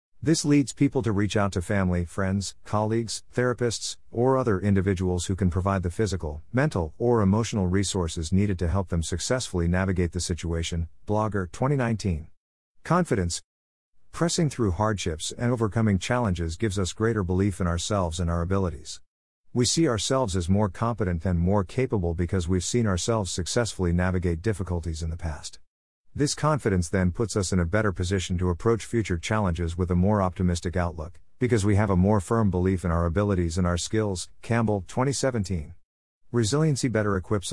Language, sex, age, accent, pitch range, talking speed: English, male, 50-69, American, 90-110 Hz, 165 wpm